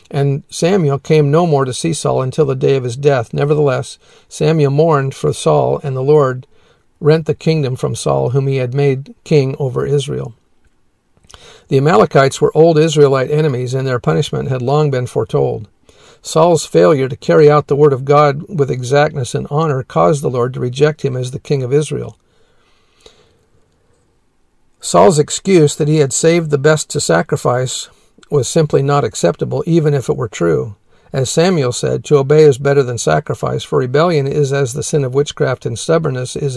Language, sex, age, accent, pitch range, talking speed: English, male, 50-69, American, 130-155 Hz, 180 wpm